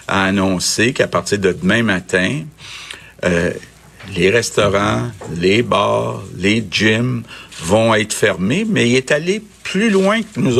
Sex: male